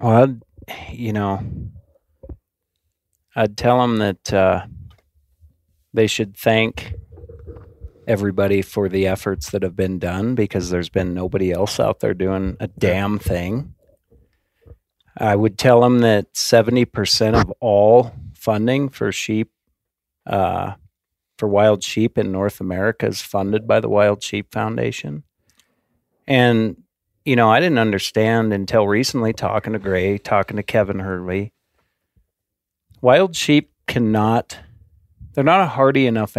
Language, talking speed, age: English, 130 wpm, 50-69